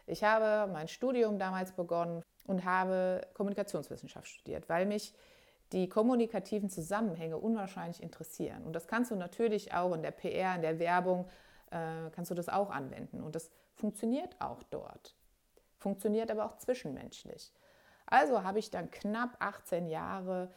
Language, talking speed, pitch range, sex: German, 150 wpm, 170-210 Hz, female